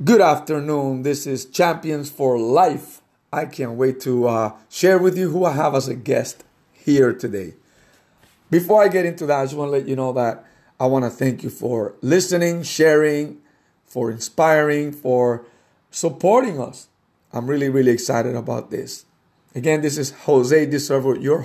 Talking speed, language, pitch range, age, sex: 170 wpm, English, 130-165 Hz, 50-69, male